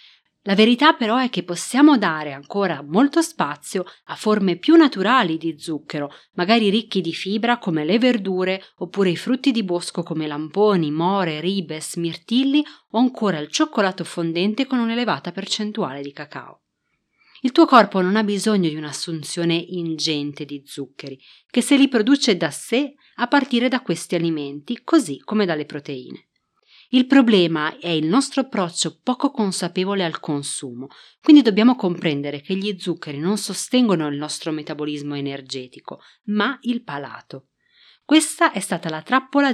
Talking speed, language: 150 wpm, Italian